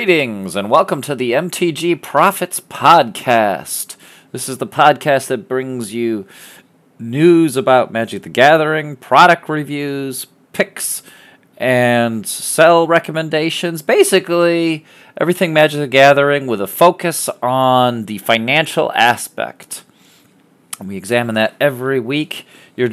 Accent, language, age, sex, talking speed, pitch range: American, English, 40-59, male, 115 wpm, 130-165 Hz